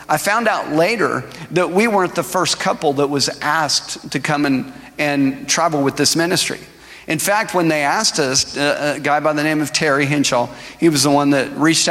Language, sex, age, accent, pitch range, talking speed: English, male, 50-69, American, 140-180 Hz, 200 wpm